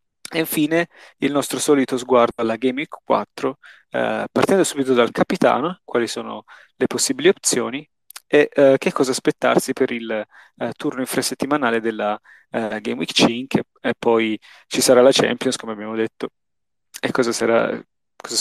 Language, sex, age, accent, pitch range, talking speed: Italian, male, 20-39, native, 125-160 Hz, 155 wpm